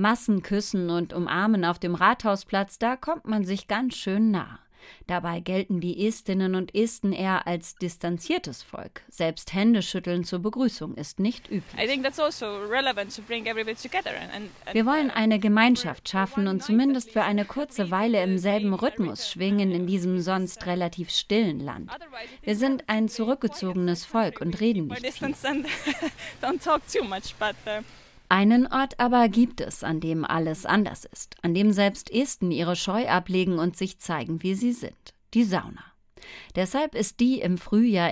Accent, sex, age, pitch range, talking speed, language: German, female, 30-49, 175-225 Hz, 140 wpm, German